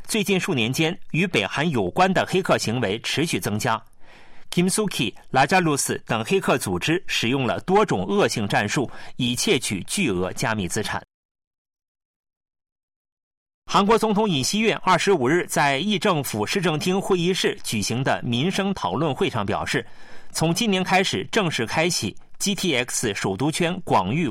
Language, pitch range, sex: Chinese, 115-185 Hz, male